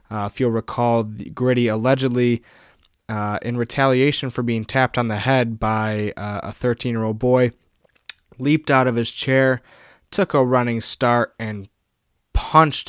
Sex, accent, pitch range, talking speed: male, American, 105-135 Hz, 145 wpm